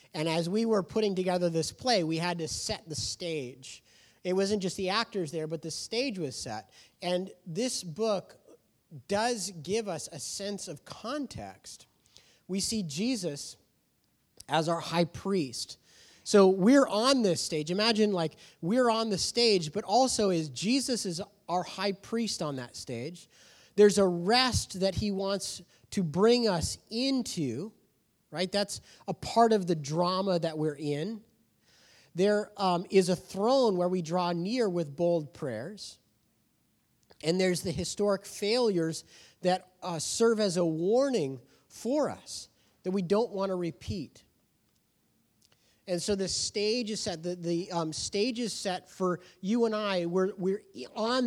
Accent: American